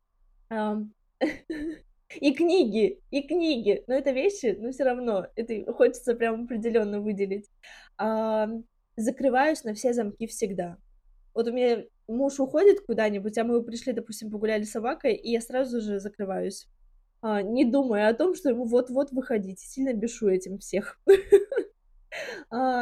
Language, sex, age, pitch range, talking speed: Russian, female, 20-39, 215-265 Hz, 140 wpm